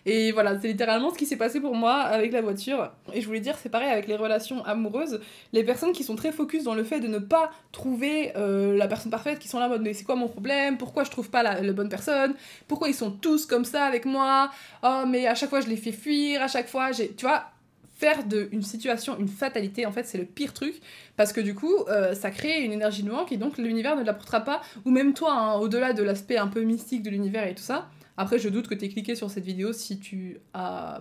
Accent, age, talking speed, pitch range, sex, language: French, 20-39, 265 wpm, 215-285 Hz, female, French